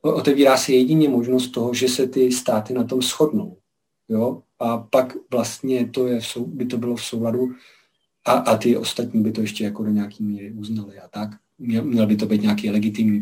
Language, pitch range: Czech, 110-125 Hz